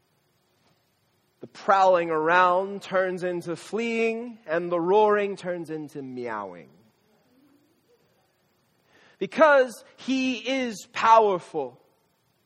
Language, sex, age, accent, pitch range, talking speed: English, male, 30-49, American, 180-225 Hz, 75 wpm